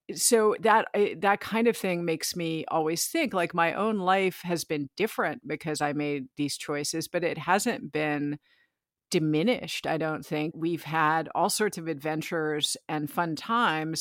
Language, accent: English, American